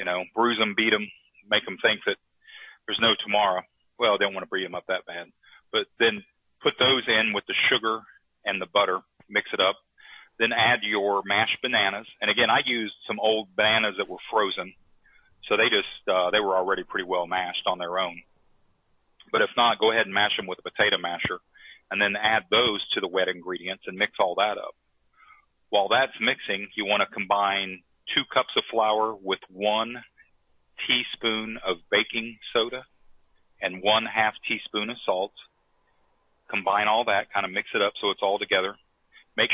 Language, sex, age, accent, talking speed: English, male, 40-59, American, 195 wpm